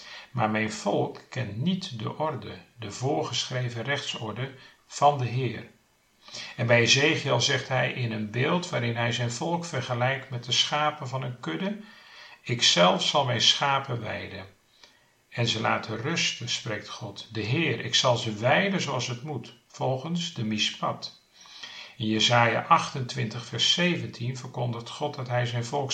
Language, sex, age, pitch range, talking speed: Dutch, male, 50-69, 110-150 Hz, 155 wpm